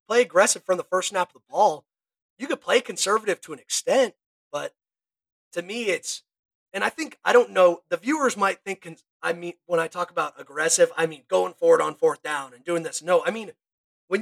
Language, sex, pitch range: English, male, 165-265 Hz